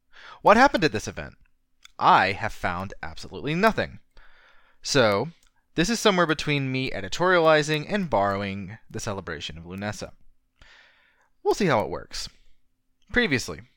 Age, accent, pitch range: 20-39, American, 100-145 Hz